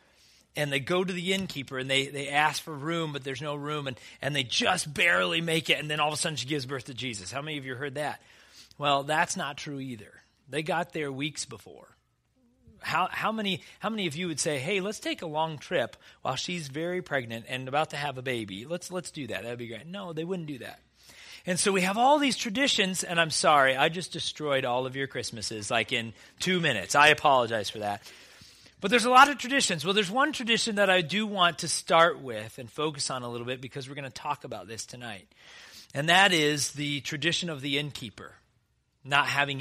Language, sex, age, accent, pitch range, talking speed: English, male, 30-49, American, 130-175 Hz, 235 wpm